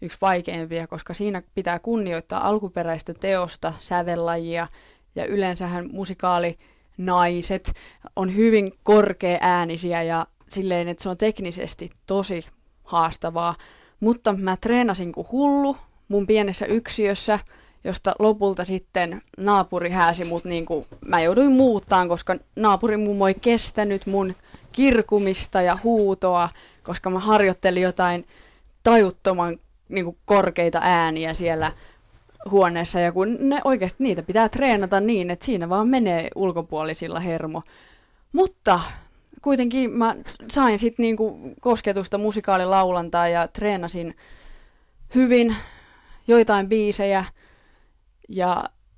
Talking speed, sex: 110 wpm, female